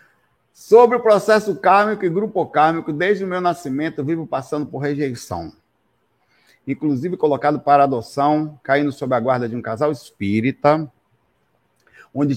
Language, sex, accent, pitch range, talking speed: Portuguese, male, Brazilian, 125-165 Hz, 140 wpm